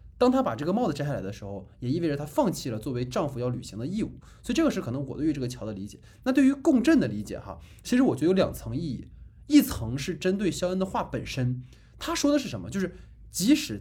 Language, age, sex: Chinese, 20-39, male